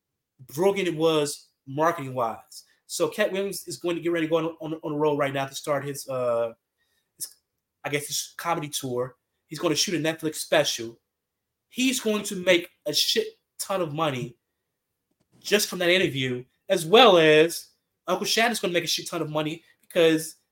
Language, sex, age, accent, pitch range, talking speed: English, male, 20-39, American, 145-195 Hz, 190 wpm